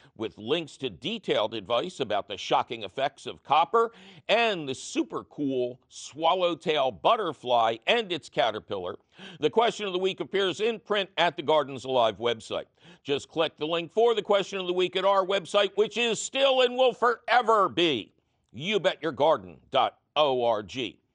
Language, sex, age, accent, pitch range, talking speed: English, male, 60-79, American, 160-220 Hz, 155 wpm